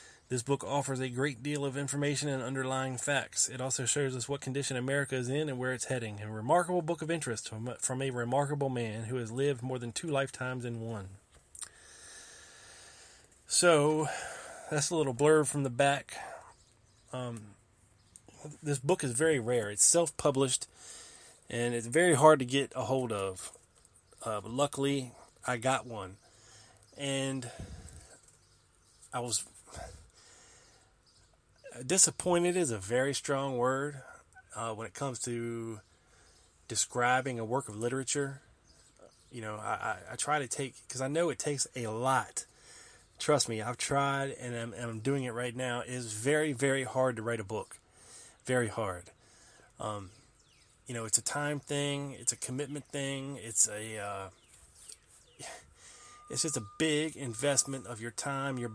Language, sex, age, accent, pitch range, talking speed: English, male, 20-39, American, 115-140 Hz, 155 wpm